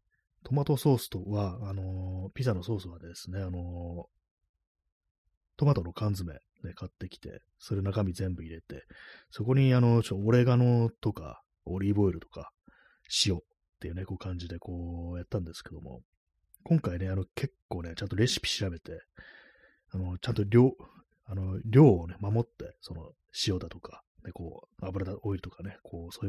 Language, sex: Japanese, male